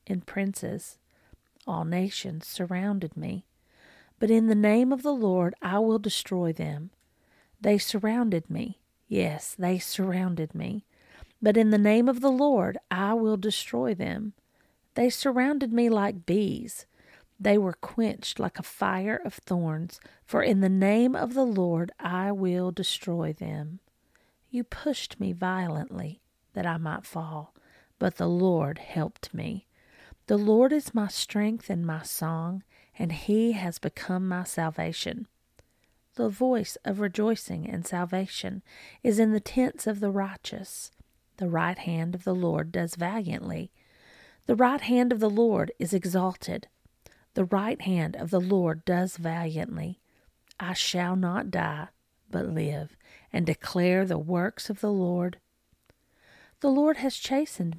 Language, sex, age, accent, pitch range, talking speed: English, female, 40-59, American, 175-220 Hz, 145 wpm